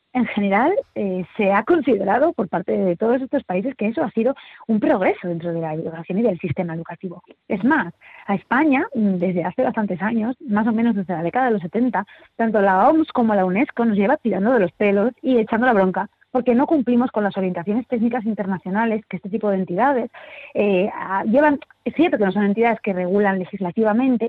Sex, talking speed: female, 205 wpm